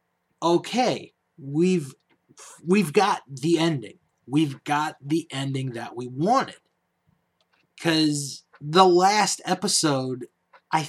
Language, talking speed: English, 100 wpm